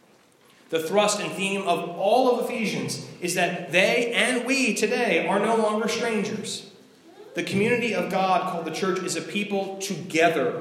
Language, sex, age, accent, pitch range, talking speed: English, male, 30-49, American, 175-220 Hz, 165 wpm